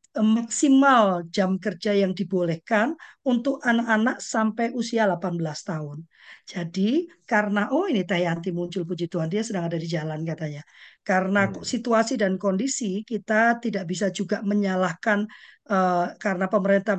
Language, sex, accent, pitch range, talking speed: Indonesian, female, native, 185-220 Hz, 130 wpm